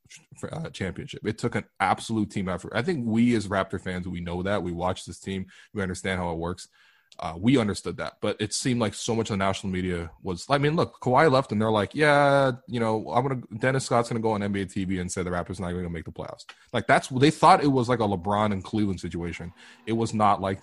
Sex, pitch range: male, 95-115 Hz